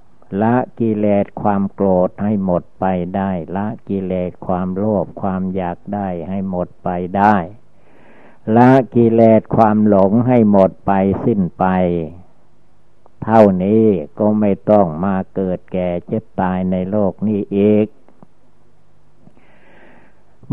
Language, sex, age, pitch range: Thai, male, 60-79, 95-110 Hz